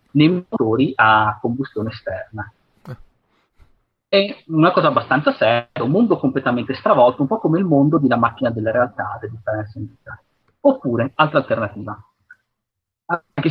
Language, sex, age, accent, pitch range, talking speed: Italian, male, 30-49, native, 120-160 Hz, 135 wpm